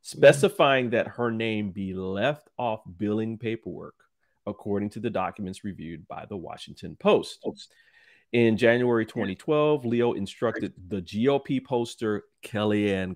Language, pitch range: English, 105-145 Hz